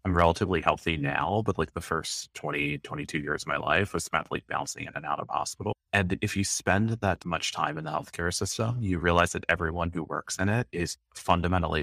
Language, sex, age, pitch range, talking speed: English, male, 30-49, 80-95 Hz, 225 wpm